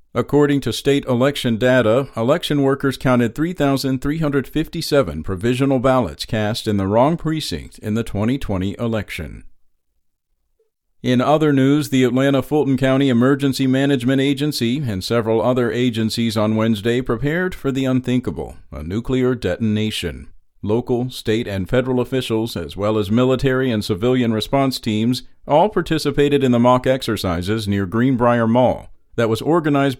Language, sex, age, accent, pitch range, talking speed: English, male, 50-69, American, 110-140 Hz, 135 wpm